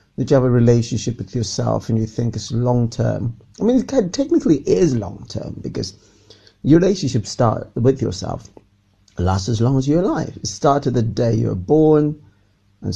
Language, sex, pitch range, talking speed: English, male, 100-125 Hz, 185 wpm